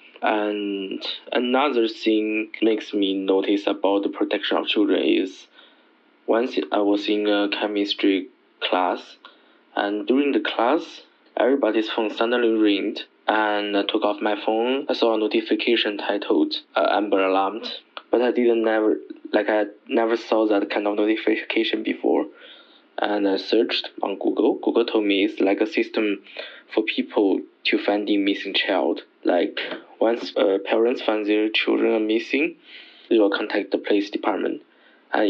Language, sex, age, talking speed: Malay, male, 20-39, 150 wpm